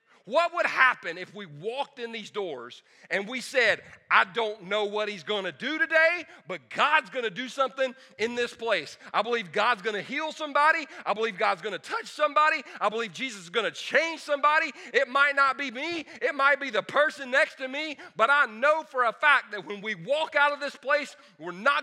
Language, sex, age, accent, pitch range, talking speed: English, male, 40-59, American, 220-290 Hz, 225 wpm